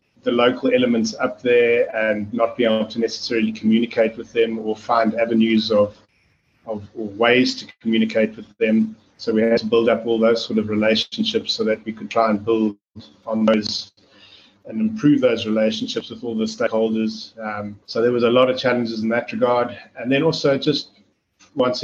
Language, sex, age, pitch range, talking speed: English, male, 30-49, 110-120 Hz, 190 wpm